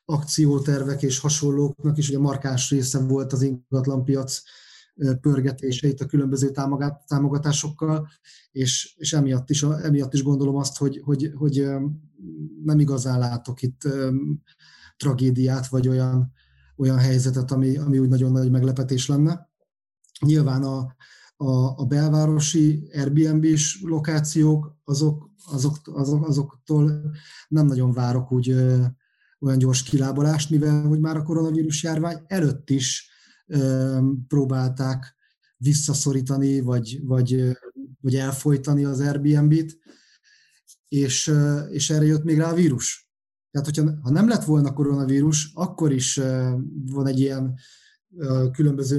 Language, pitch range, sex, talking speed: Hungarian, 130-150 Hz, male, 125 wpm